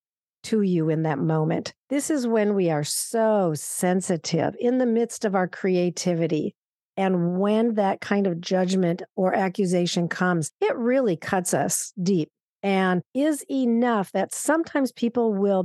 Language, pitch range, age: English, 180-235 Hz, 50-69